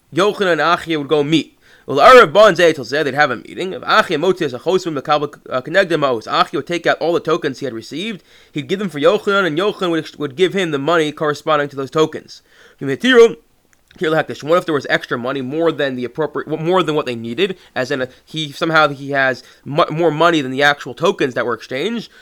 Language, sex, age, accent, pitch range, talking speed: English, male, 20-39, American, 135-175 Hz, 185 wpm